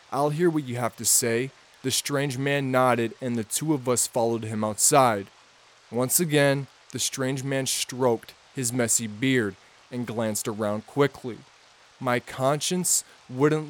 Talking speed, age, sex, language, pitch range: 155 wpm, 20-39, male, English, 115-140 Hz